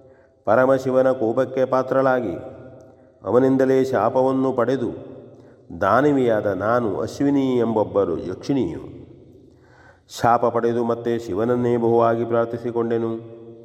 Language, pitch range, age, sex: Kannada, 115-130 Hz, 40-59, male